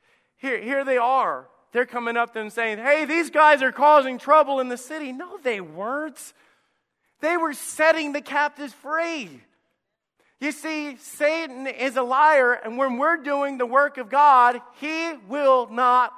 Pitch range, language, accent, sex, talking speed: 180-275 Hz, English, American, male, 165 wpm